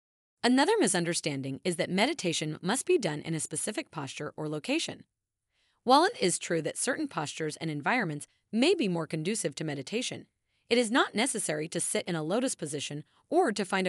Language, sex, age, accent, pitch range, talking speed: English, female, 30-49, American, 160-250 Hz, 180 wpm